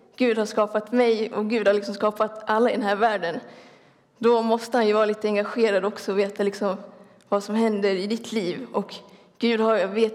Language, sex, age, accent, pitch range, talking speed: Swedish, female, 20-39, native, 205-230 Hz, 215 wpm